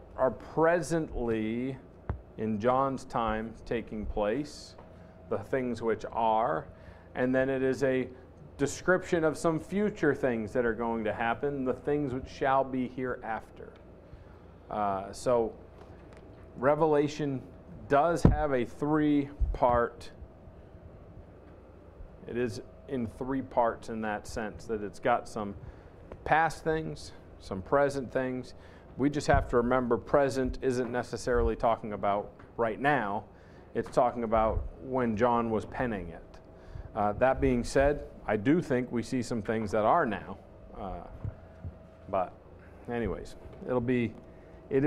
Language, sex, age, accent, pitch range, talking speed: English, male, 40-59, American, 95-130 Hz, 130 wpm